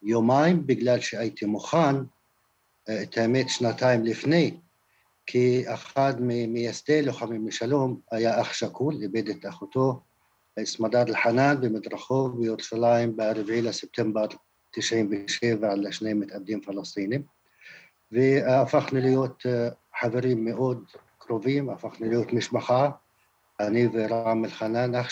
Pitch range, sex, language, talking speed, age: 115-135 Hz, male, Hebrew, 100 wpm, 50-69